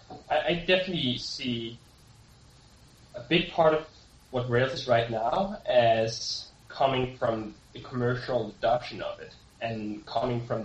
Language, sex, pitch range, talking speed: English, male, 110-125 Hz, 130 wpm